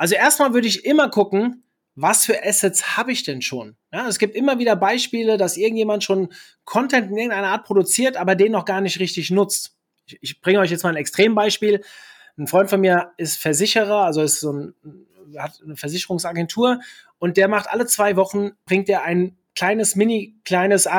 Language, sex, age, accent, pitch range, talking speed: German, male, 30-49, German, 170-220 Hz, 175 wpm